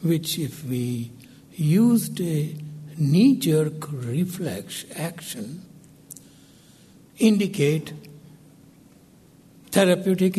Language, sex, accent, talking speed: English, male, Indian, 60 wpm